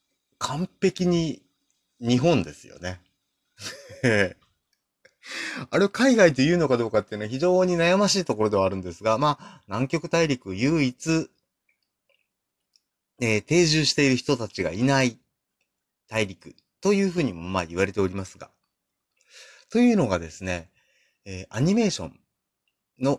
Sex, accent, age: male, native, 30-49